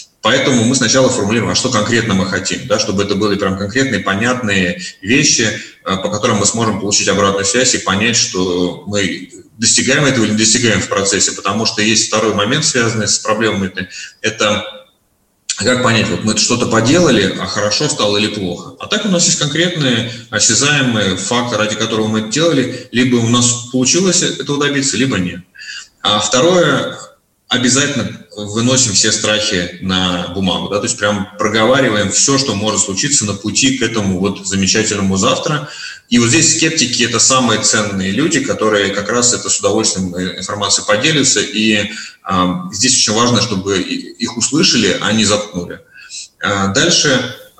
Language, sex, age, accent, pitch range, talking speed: Russian, male, 30-49, native, 100-125 Hz, 160 wpm